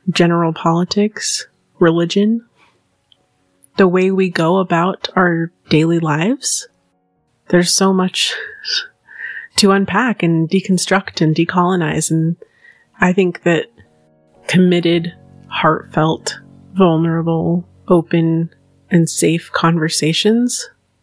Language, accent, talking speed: English, American, 90 wpm